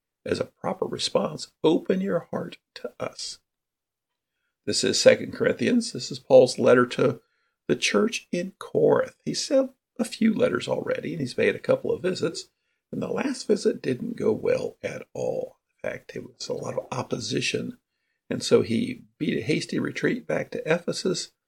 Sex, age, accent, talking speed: male, 50-69, American, 175 wpm